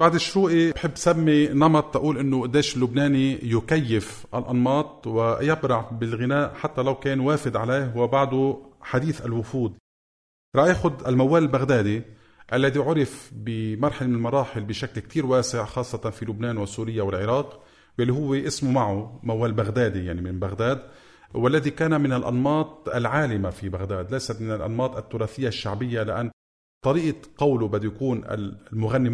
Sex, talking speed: male, 130 wpm